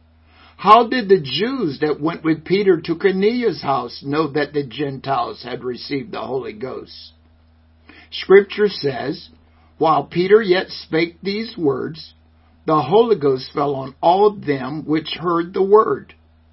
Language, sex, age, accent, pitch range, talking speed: English, male, 60-79, American, 120-175 Hz, 140 wpm